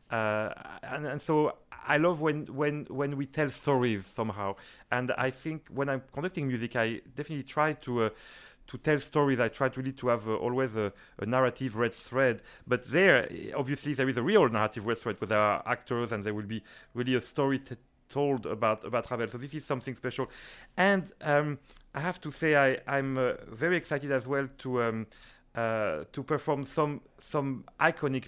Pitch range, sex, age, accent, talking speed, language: 120-145 Hz, male, 40-59, French, 195 wpm, English